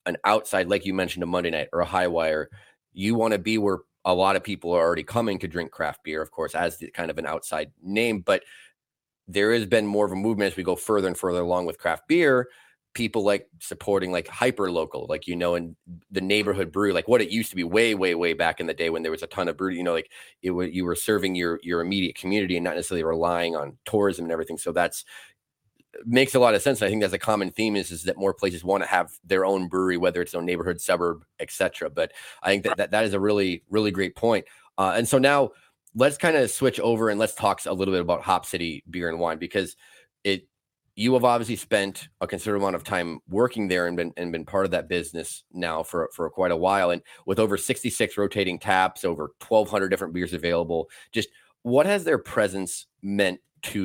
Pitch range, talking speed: 85-105 Hz, 240 wpm